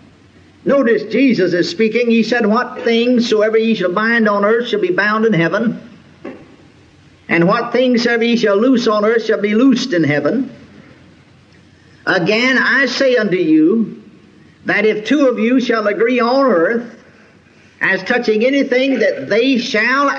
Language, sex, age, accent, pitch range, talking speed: English, male, 50-69, American, 205-255 Hz, 160 wpm